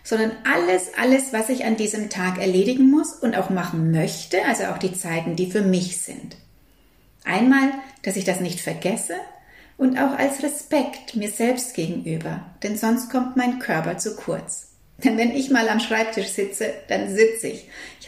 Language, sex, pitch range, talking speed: German, female, 190-250 Hz, 175 wpm